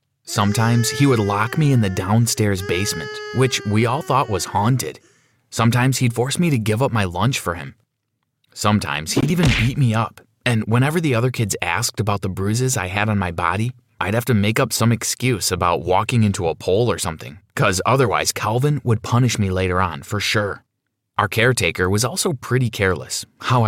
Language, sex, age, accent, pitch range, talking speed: English, male, 20-39, American, 100-125 Hz, 195 wpm